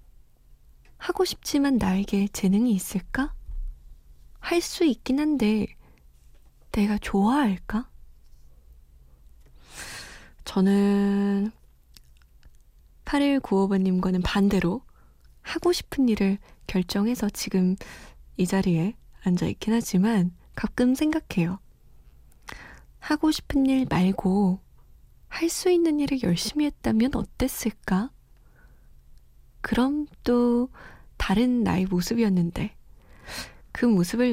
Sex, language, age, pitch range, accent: female, Korean, 20-39, 180-245 Hz, native